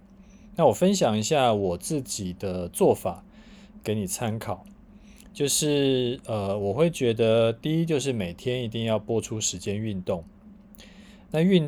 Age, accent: 20-39, native